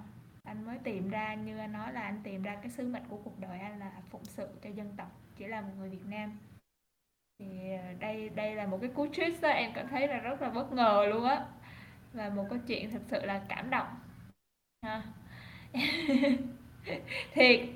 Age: 10-29